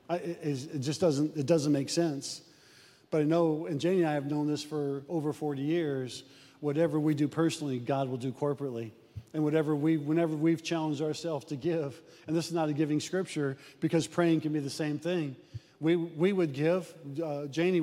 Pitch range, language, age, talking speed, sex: 140-165 Hz, English, 40-59, 200 wpm, male